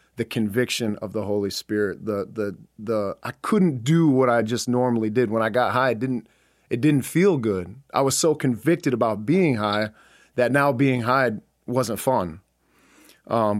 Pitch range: 105-125 Hz